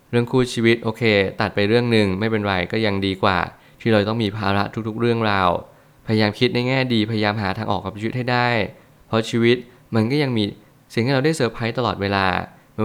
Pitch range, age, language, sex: 100-120 Hz, 20-39, Thai, male